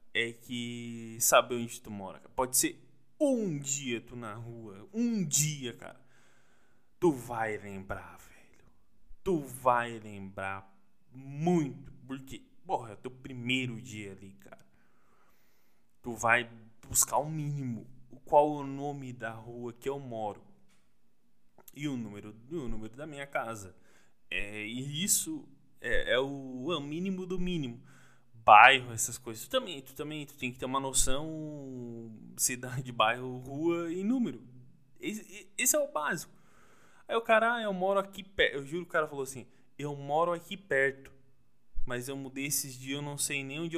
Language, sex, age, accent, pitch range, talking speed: Portuguese, male, 20-39, Brazilian, 115-150 Hz, 160 wpm